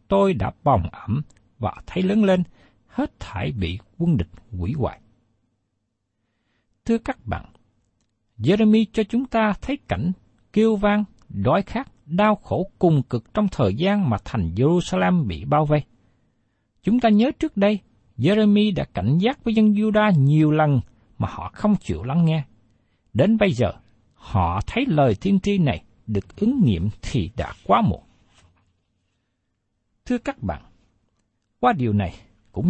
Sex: male